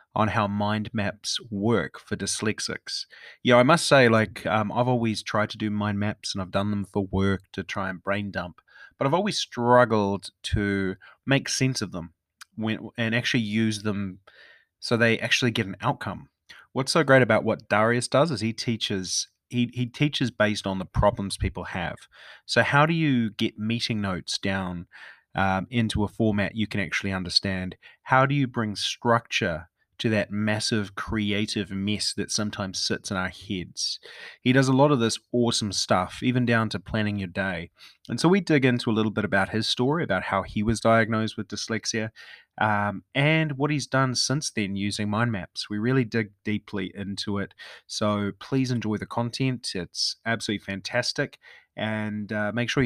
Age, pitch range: 30-49, 100-120 Hz